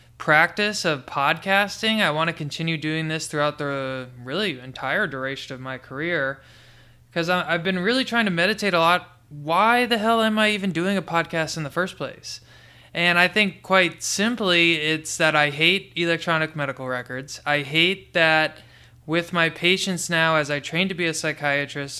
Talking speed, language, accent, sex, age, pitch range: 175 wpm, English, American, male, 20-39, 145-175 Hz